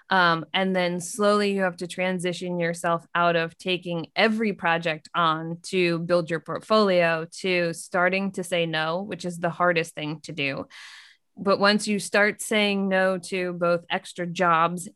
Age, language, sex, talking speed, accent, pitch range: 20-39, English, female, 165 wpm, American, 170-200 Hz